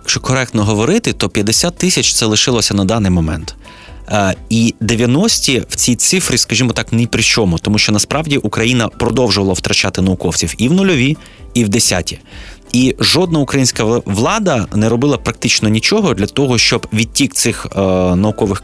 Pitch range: 100-130 Hz